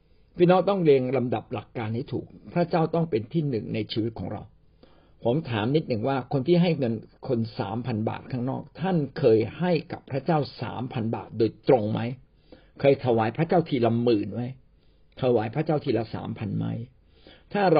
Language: Thai